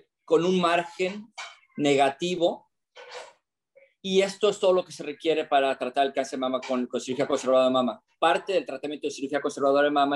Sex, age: male, 40-59